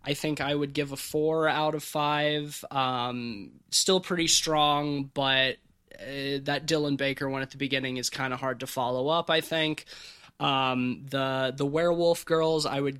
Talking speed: 180 wpm